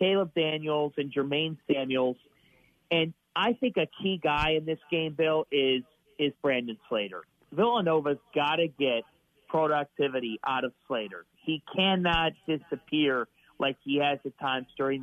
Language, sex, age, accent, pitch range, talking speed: English, male, 40-59, American, 145-175 Hz, 140 wpm